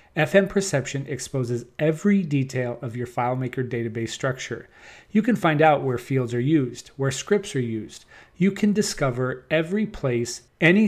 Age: 40-59